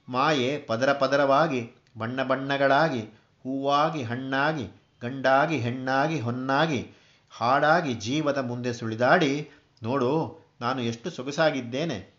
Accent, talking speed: native, 90 wpm